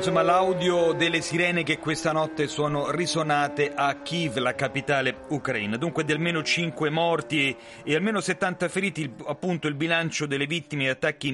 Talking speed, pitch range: 160 wpm, 135-175 Hz